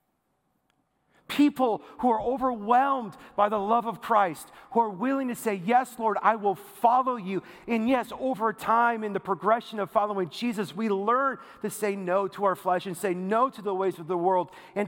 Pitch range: 175-225 Hz